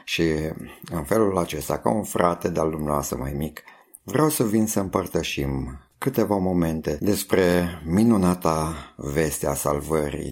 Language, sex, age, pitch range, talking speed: Romanian, male, 50-69, 75-100 Hz, 130 wpm